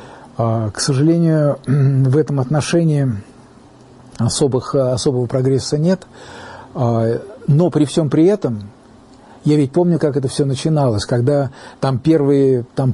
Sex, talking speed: male, 115 wpm